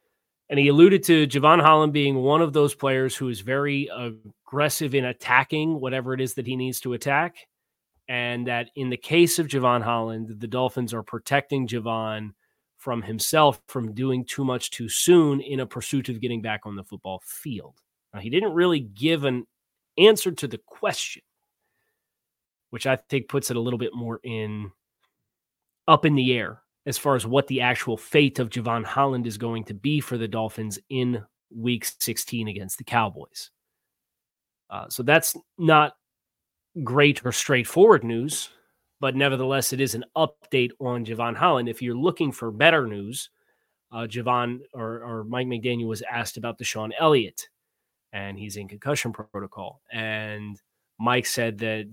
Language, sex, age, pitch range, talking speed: English, male, 30-49, 115-140 Hz, 170 wpm